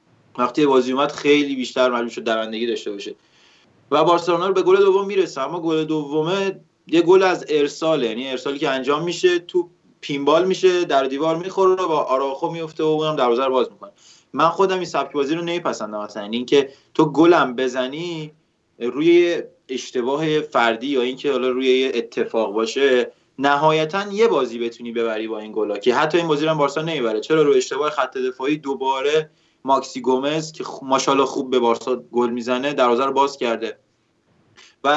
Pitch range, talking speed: 125-160 Hz, 170 wpm